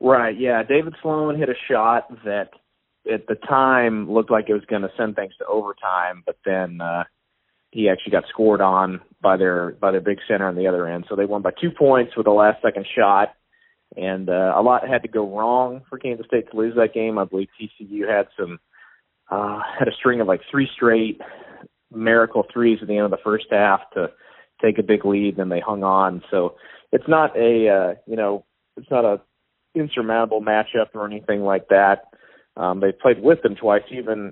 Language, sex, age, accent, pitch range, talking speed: English, male, 30-49, American, 95-120 Hz, 210 wpm